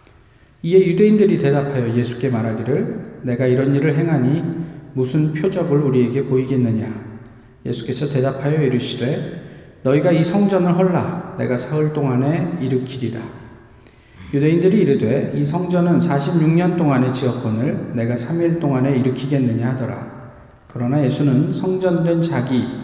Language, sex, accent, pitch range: Korean, male, native, 120-155 Hz